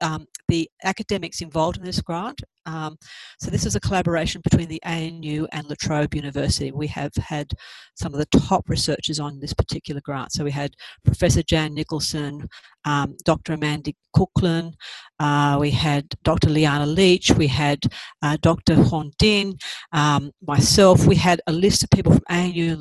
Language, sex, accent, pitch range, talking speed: English, female, Australian, 150-180 Hz, 170 wpm